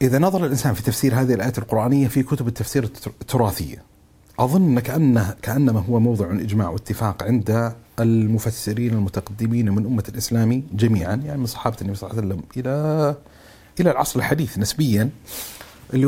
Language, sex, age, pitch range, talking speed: Arabic, male, 40-59, 110-130 Hz, 145 wpm